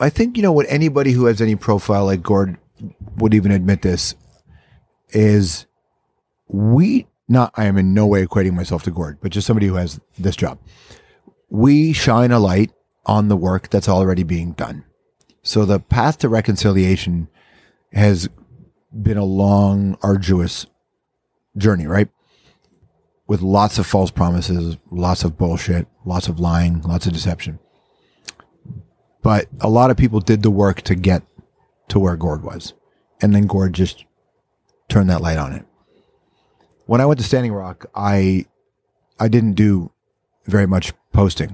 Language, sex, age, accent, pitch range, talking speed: English, male, 30-49, American, 90-105 Hz, 155 wpm